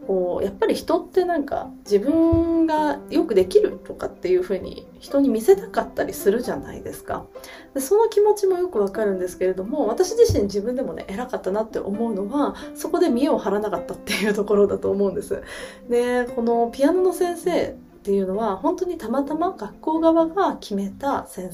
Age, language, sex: 20-39, Japanese, female